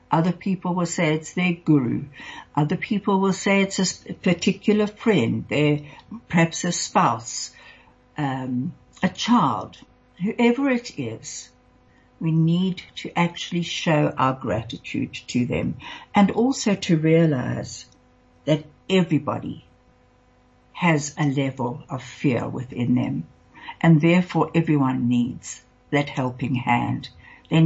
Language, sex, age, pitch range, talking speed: English, female, 60-79, 135-180 Hz, 115 wpm